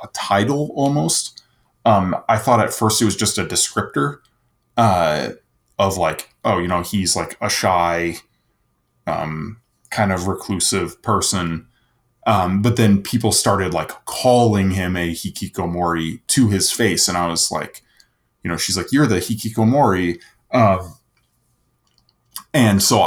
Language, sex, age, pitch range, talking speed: English, male, 20-39, 85-105 Hz, 145 wpm